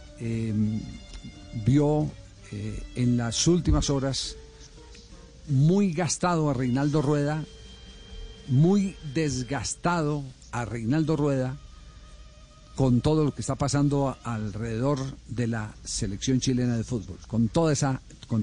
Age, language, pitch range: 50-69, Spanish, 120-150 Hz